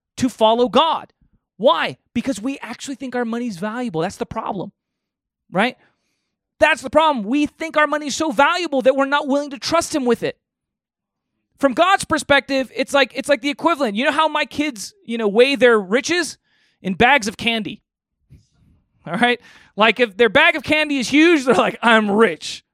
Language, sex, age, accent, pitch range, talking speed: English, male, 30-49, American, 200-285 Hz, 185 wpm